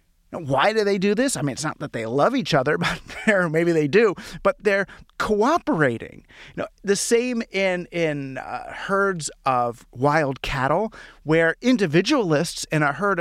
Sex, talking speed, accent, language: male, 175 wpm, American, English